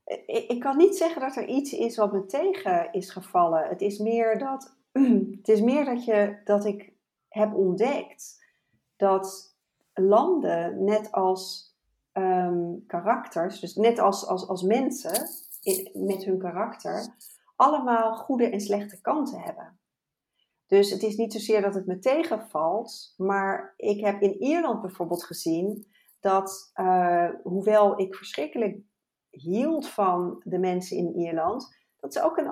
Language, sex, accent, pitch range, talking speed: Dutch, female, Dutch, 190-245 Hz, 145 wpm